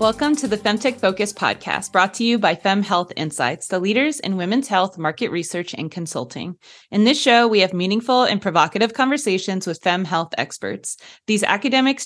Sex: female